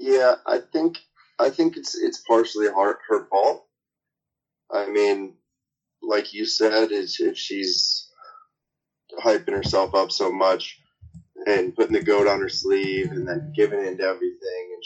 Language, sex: English, male